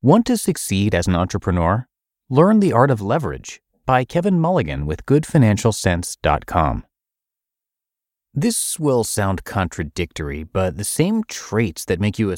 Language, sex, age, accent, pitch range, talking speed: English, male, 30-49, American, 90-130 Hz, 135 wpm